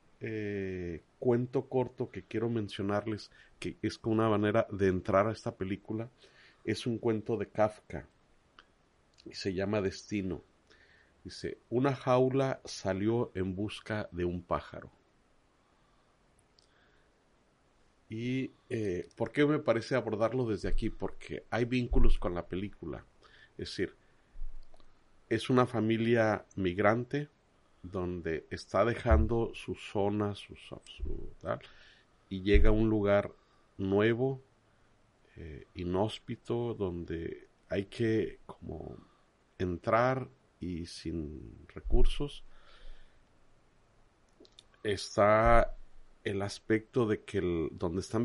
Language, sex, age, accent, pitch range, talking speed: Spanish, male, 40-59, Mexican, 95-115 Hz, 105 wpm